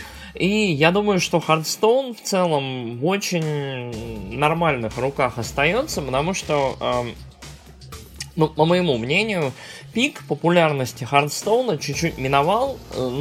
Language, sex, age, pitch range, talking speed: Russian, male, 20-39, 125-165 Hz, 115 wpm